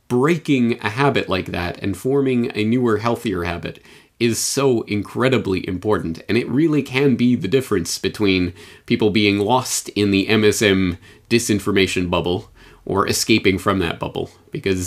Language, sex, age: English, male, 30-49